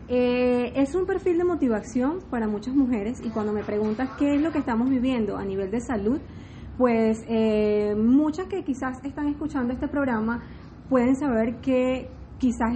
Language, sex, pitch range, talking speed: Spanish, female, 220-285 Hz, 170 wpm